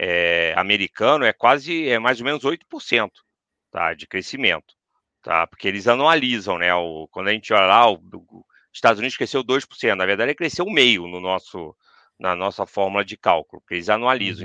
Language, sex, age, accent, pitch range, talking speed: Portuguese, male, 40-59, Brazilian, 105-165 Hz, 180 wpm